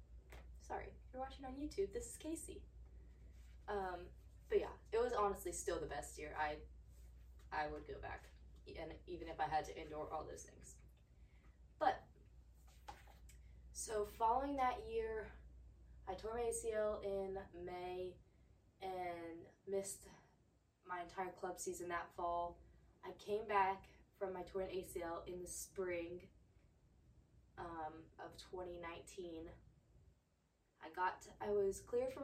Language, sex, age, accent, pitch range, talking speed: English, female, 20-39, American, 140-200 Hz, 140 wpm